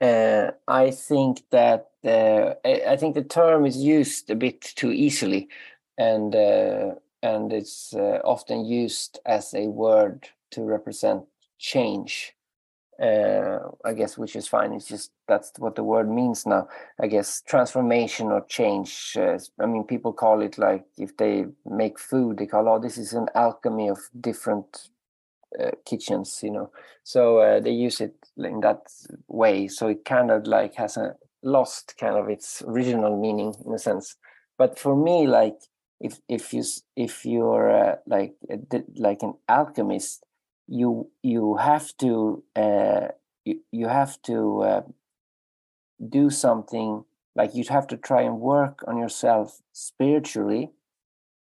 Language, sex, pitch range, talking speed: English, male, 110-135 Hz, 155 wpm